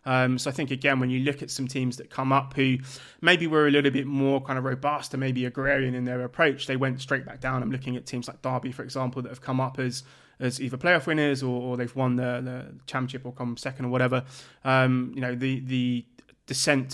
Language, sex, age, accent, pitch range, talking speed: English, male, 20-39, British, 125-135 Hz, 250 wpm